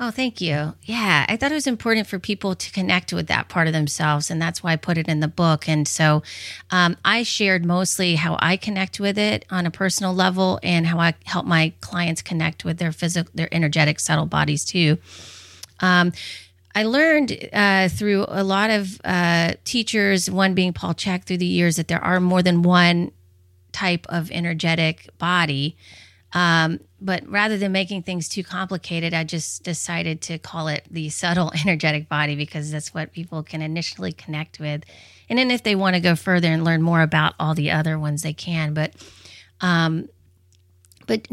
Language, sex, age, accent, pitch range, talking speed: English, female, 30-49, American, 155-185 Hz, 190 wpm